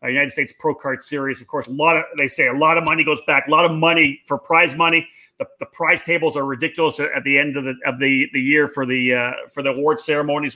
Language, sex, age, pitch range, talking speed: English, male, 30-49, 145-175 Hz, 260 wpm